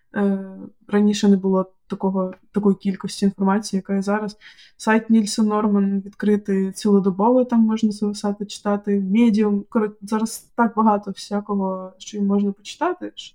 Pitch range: 195-220 Hz